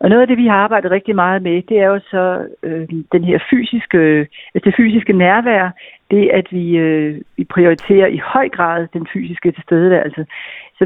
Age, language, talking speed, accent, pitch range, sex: 60-79, Danish, 195 wpm, native, 170-225 Hz, female